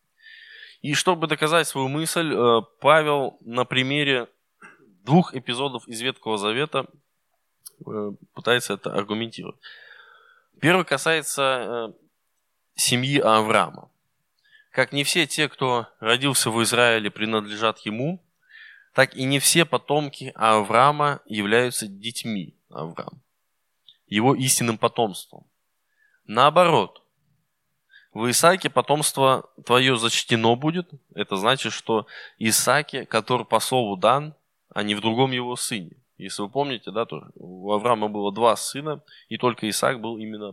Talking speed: 115 wpm